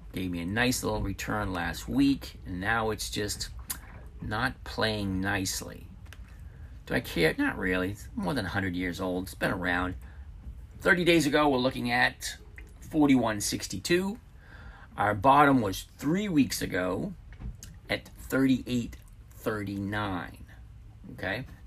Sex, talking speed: male, 120 wpm